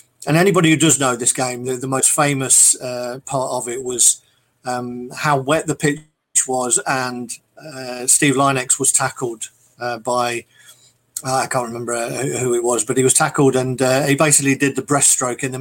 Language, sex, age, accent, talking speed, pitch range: English, male, 50-69, British, 190 wpm, 125-140 Hz